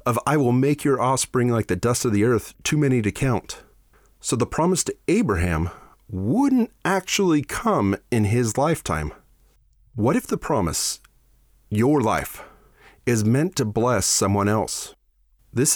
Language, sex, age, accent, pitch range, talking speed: English, male, 30-49, American, 105-145 Hz, 150 wpm